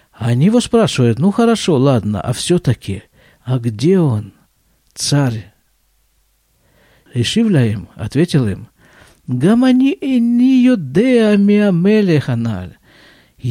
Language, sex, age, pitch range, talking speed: Russian, male, 50-69, 115-185 Hz, 90 wpm